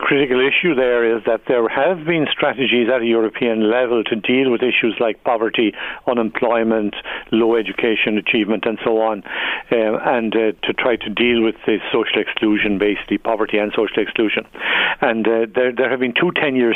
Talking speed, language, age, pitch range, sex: 180 wpm, English, 60-79, 110-120 Hz, male